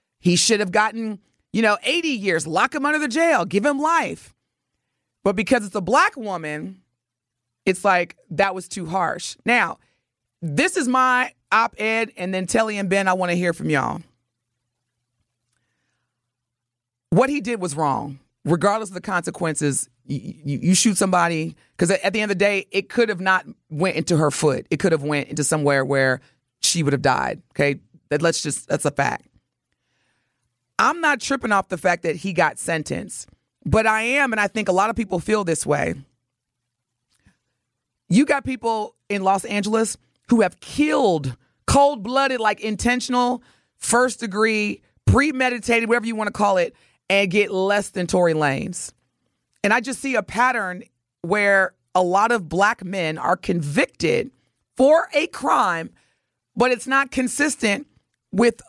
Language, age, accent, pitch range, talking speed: English, 30-49, American, 145-225 Hz, 165 wpm